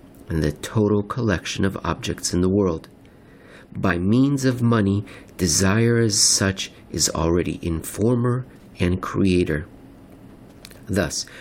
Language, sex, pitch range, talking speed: English, male, 95-115 Hz, 115 wpm